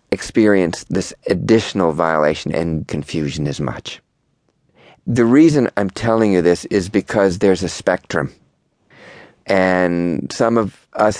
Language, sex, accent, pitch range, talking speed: English, male, American, 80-100 Hz, 125 wpm